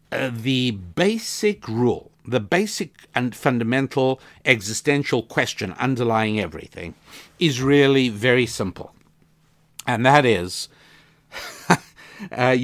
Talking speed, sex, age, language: 95 wpm, male, 60-79, English